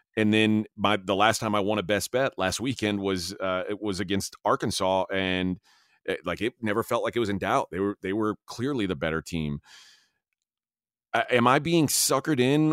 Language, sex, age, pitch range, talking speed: English, male, 30-49, 95-115 Hz, 205 wpm